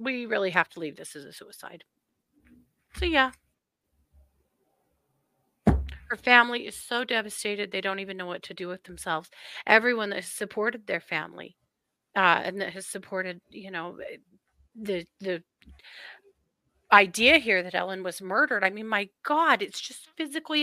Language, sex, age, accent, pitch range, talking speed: English, female, 40-59, American, 175-240 Hz, 155 wpm